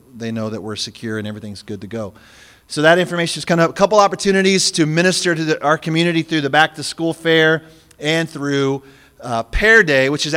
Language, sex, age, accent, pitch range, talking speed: English, male, 30-49, American, 135-170 Hz, 215 wpm